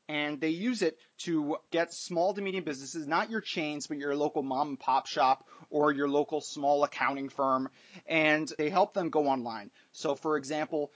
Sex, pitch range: male, 135-160 Hz